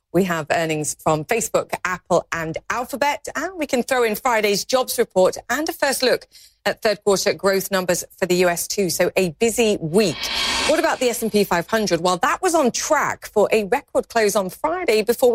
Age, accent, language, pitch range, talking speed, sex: 40-59, British, English, 185-270 Hz, 195 wpm, female